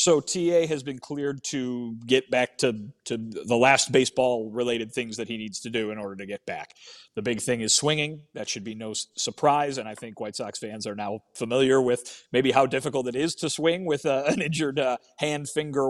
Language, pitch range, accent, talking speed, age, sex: English, 110-130 Hz, American, 215 wpm, 30-49, male